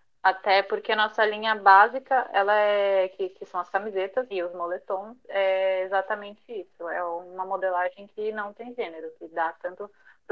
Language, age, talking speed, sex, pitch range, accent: Portuguese, 20-39, 175 wpm, female, 205-270 Hz, Brazilian